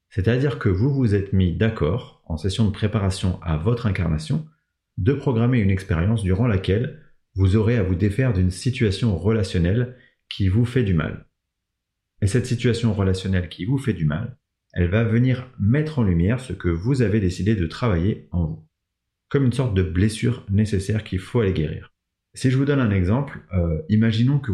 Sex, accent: male, French